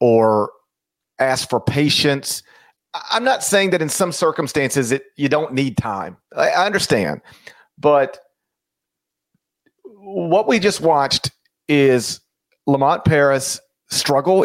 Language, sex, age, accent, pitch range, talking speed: English, male, 40-59, American, 135-200 Hz, 110 wpm